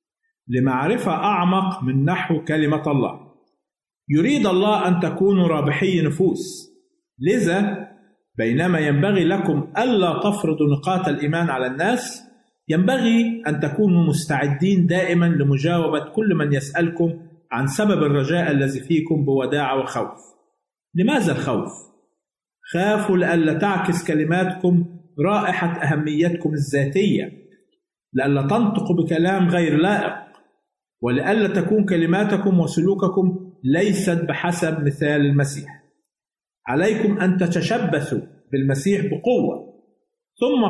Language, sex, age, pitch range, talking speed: Arabic, male, 50-69, 150-195 Hz, 95 wpm